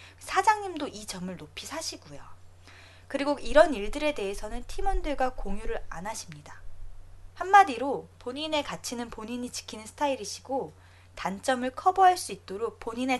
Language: Korean